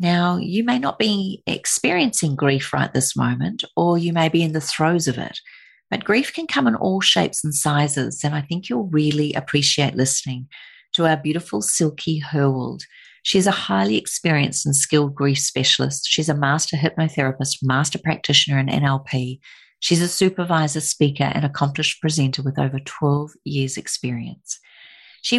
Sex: female